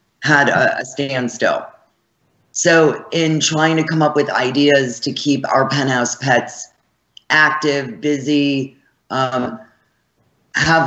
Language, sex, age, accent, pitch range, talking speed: English, female, 40-59, American, 130-150 Hz, 110 wpm